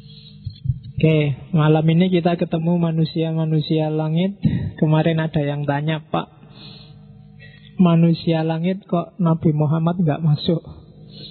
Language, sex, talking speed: Indonesian, male, 105 wpm